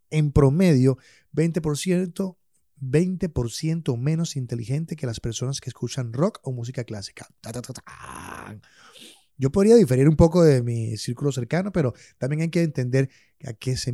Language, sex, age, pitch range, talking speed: Spanish, male, 30-49, 120-160 Hz, 140 wpm